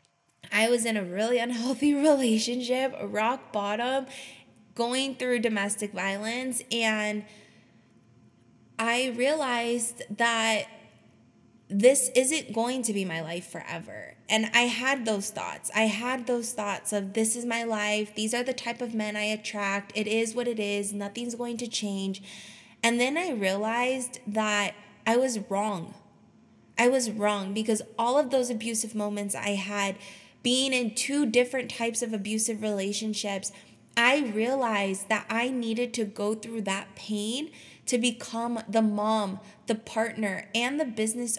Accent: American